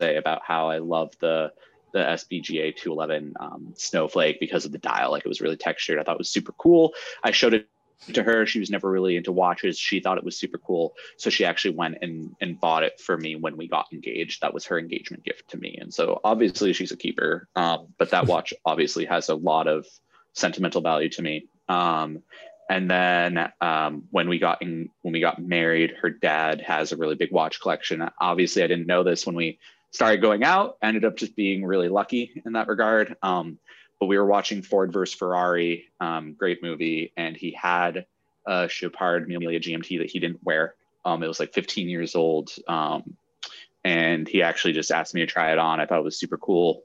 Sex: male